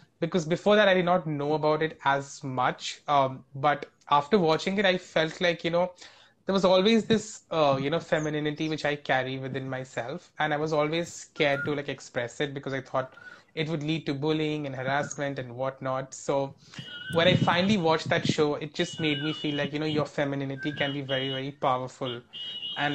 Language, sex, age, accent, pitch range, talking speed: English, male, 20-39, Indian, 140-170 Hz, 205 wpm